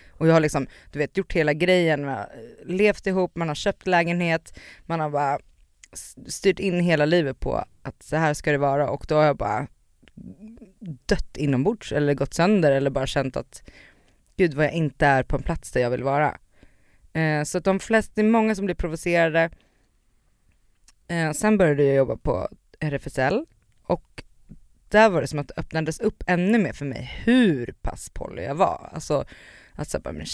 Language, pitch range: Swedish, 140-185 Hz